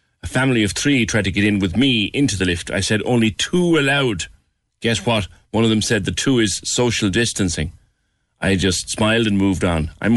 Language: English